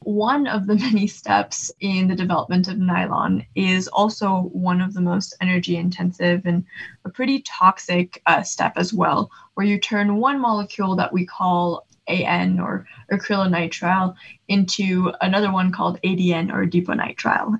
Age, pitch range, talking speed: 20-39, 180-210 Hz, 150 wpm